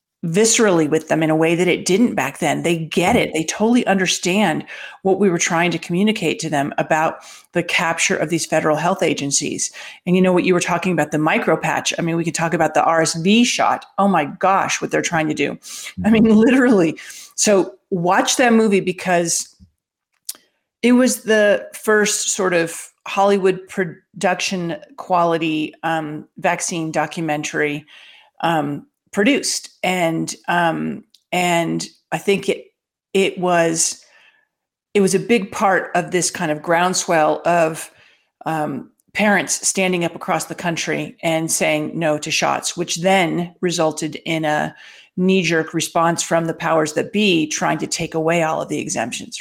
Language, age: English, 40-59